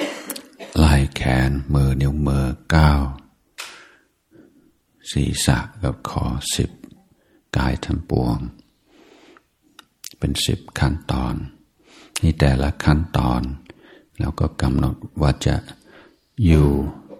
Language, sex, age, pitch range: Thai, male, 60-79, 65-75 Hz